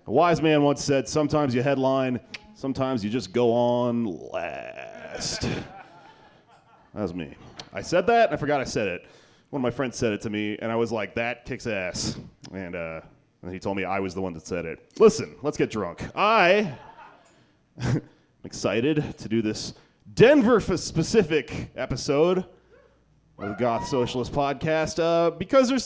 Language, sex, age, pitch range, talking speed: English, male, 30-49, 120-170 Hz, 170 wpm